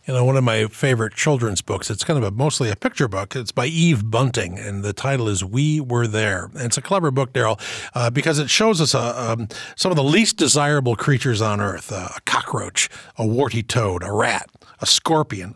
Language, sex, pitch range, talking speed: English, male, 110-140 Hz, 225 wpm